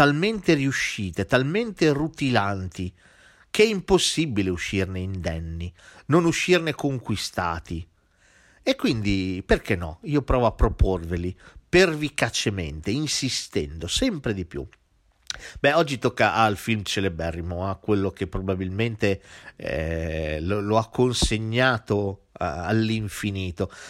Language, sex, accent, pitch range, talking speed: Italian, male, native, 90-120 Hz, 110 wpm